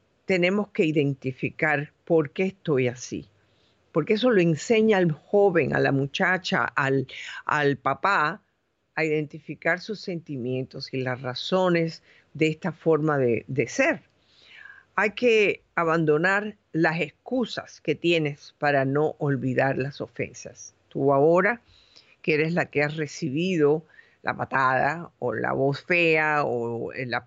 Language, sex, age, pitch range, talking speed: Spanish, female, 50-69, 140-185 Hz, 130 wpm